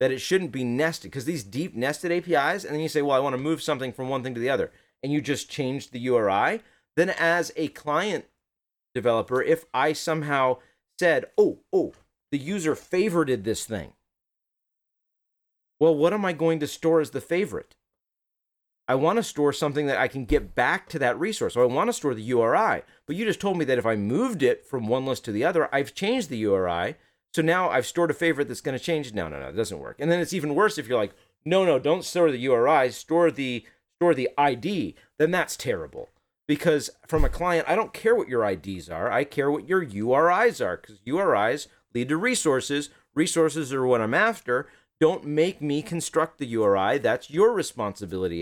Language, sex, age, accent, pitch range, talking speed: English, male, 30-49, American, 125-170 Hz, 215 wpm